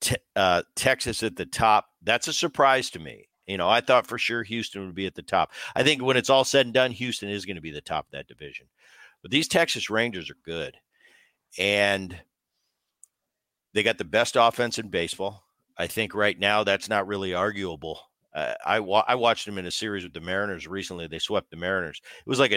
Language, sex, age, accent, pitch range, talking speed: English, male, 50-69, American, 95-120 Hz, 220 wpm